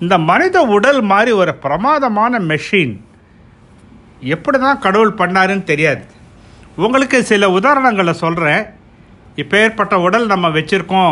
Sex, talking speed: male, 115 wpm